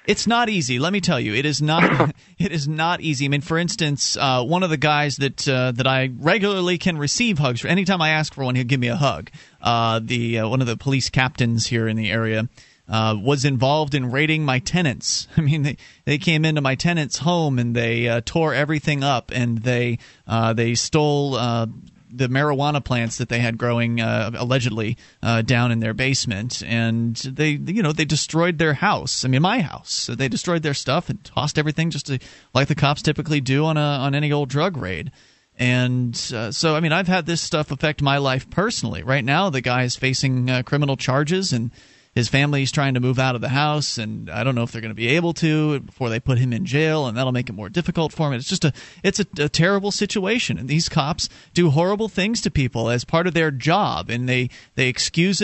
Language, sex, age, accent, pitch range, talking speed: English, male, 30-49, American, 125-165 Hz, 230 wpm